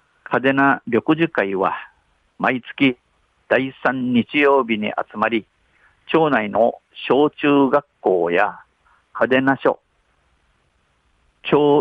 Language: Japanese